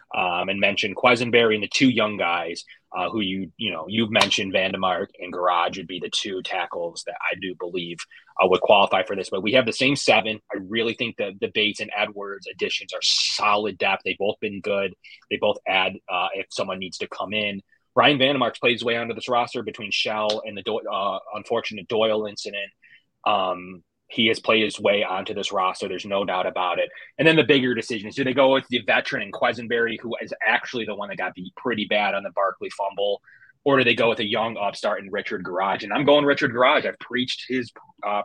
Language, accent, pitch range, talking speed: English, American, 105-125 Hz, 225 wpm